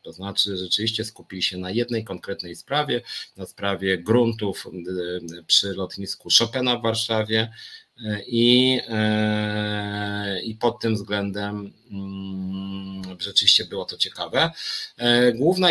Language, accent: Polish, native